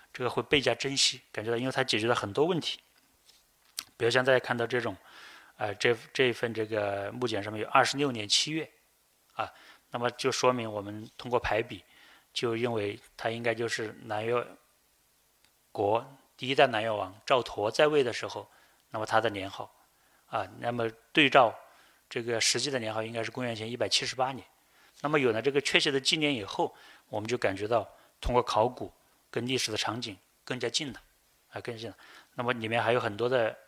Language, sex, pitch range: Chinese, male, 110-130 Hz